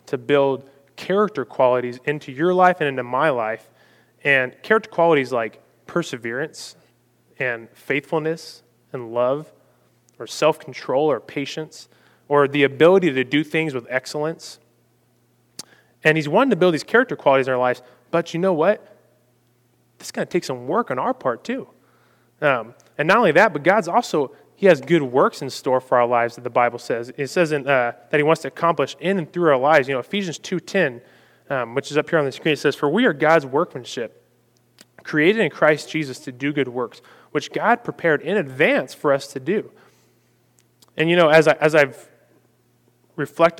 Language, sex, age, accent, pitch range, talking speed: English, male, 20-39, American, 125-165 Hz, 190 wpm